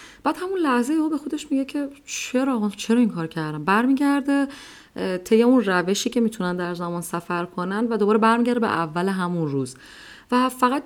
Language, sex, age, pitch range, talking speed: Persian, female, 30-49, 170-235 Hz, 175 wpm